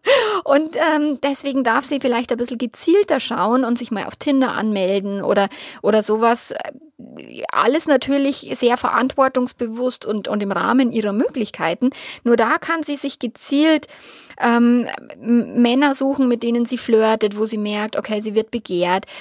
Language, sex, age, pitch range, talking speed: German, female, 20-39, 235-285 Hz, 155 wpm